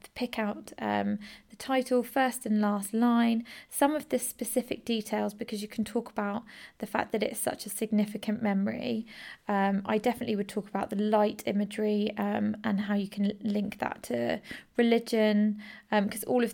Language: English